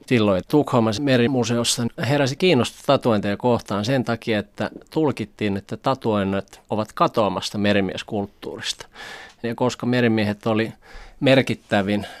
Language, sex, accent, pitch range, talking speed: Finnish, male, native, 105-135 Hz, 105 wpm